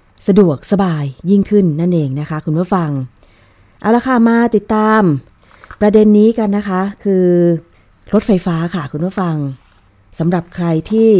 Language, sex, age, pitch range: Thai, female, 20-39, 155-195 Hz